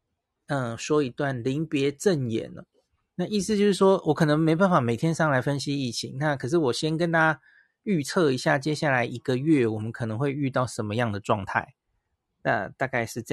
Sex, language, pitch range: male, Chinese, 125-165 Hz